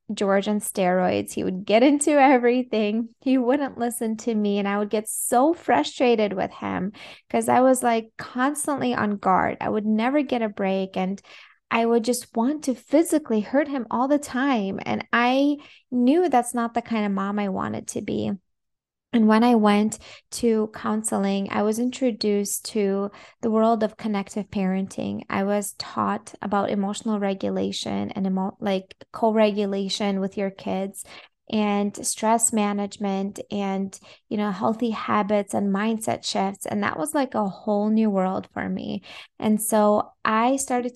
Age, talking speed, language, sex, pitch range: 20-39, 165 wpm, English, female, 195-240 Hz